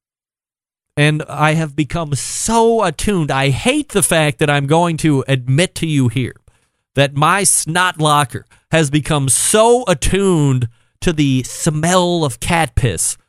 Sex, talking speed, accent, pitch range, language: male, 145 wpm, American, 125-180 Hz, English